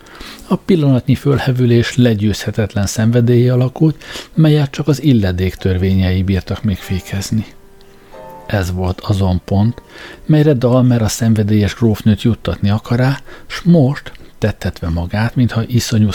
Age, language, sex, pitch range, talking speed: 60-79, Hungarian, male, 100-125 Hz, 110 wpm